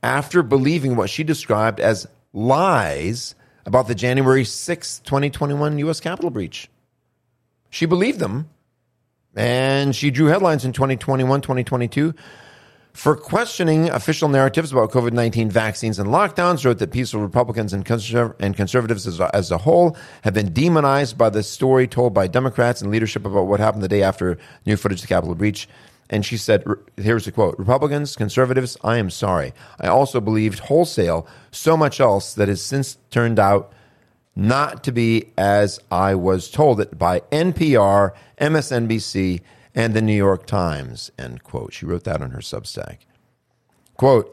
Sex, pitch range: male, 105-140 Hz